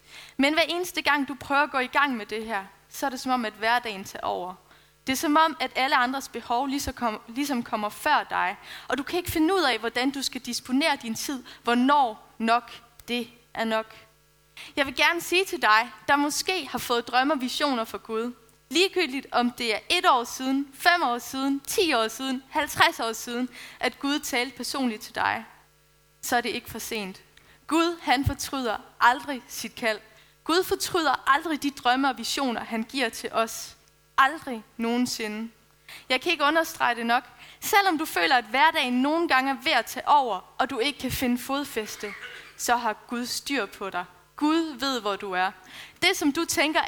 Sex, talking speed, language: female, 195 wpm, Danish